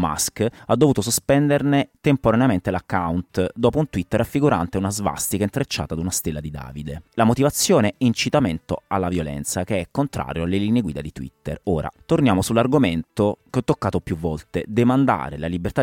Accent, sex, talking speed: native, male, 165 wpm